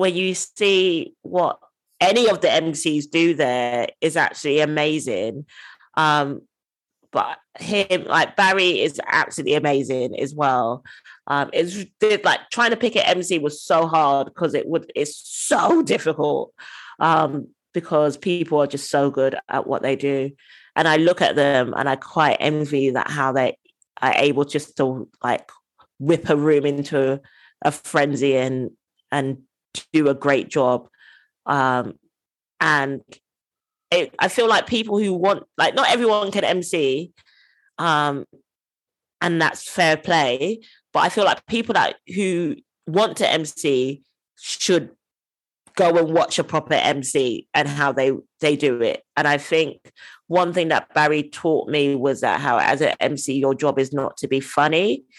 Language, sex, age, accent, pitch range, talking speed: English, female, 20-39, British, 140-180 Hz, 155 wpm